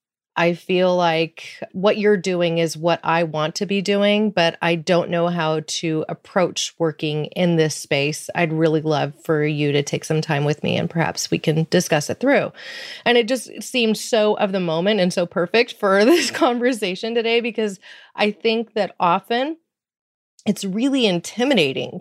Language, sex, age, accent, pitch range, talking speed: English, female, 30-49, American, 155-200 Hz, 175 wpm